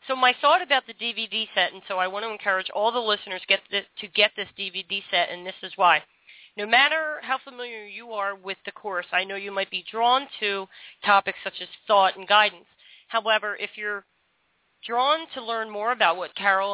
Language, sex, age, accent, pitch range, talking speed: English, female, 40-59, American, 190-235 Hz, 205 wpm